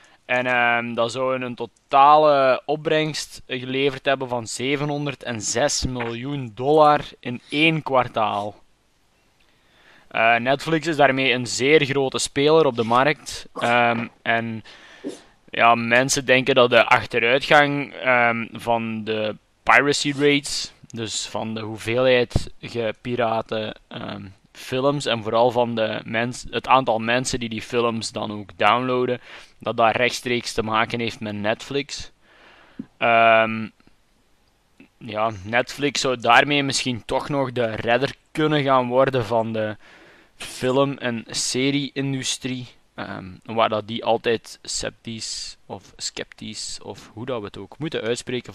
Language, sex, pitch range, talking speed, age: Dutch, male, 110-135 Hz, 120 wpm, 20-39